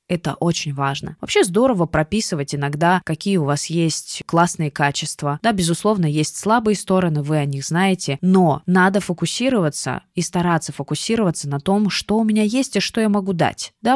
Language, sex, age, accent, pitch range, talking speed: Russian, female, 20-39, native, 150-185 Hz, 170 wpm